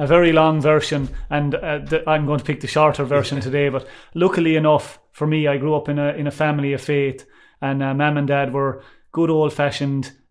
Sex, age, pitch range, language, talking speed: male, 30-49, 135-150 Hz, English, 225 wpm